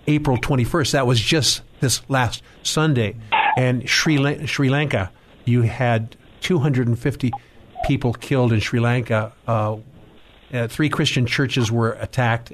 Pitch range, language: 115-135 Hz, English